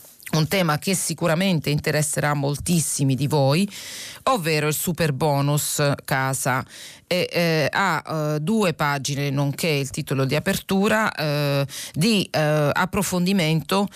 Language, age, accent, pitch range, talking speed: Italian, 40-59, native, 145-170 Hz, 120 wpm